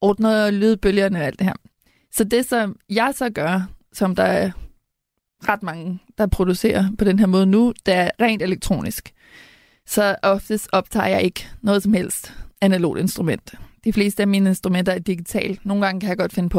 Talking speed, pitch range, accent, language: 190 wpm, 190-220 Hz, native, Danish